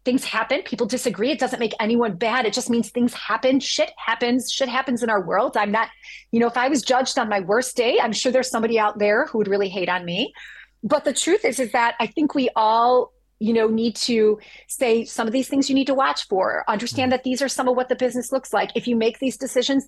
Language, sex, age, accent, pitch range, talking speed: English, female, 30-49, American, 220-255 Hz, 255 wpm